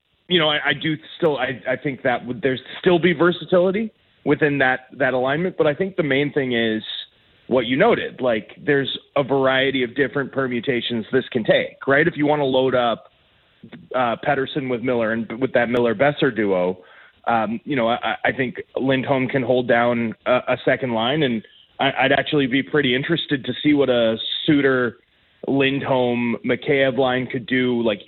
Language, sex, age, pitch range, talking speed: English, male, 30-49, 125-145 Hz, 175 wpm